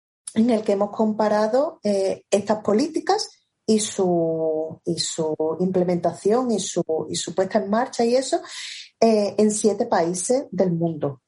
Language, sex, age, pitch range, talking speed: Spanish, female, 30-49, 175-220 Hz, 140 wpm